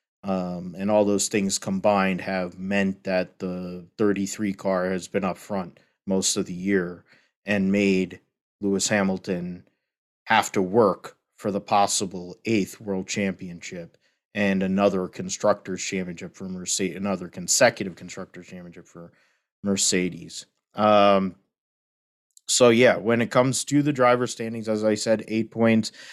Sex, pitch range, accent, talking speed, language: male, 95-110 Hz, American, 140 wpm, English